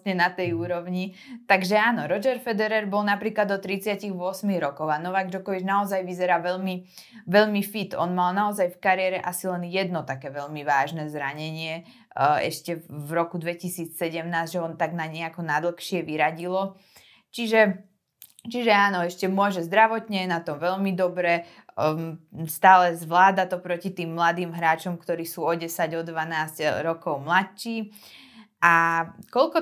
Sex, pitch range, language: female, 165-195 Hz, Slovak